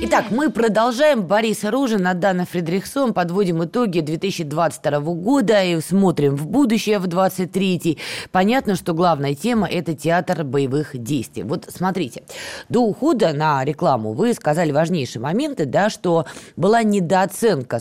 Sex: female